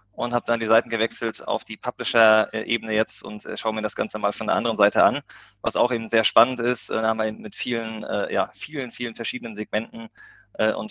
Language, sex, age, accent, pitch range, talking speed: German, male, 20-39, German, 110-125 Hz, 215 wpm